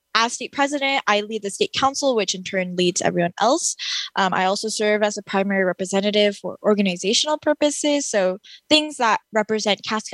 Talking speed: 180 wpm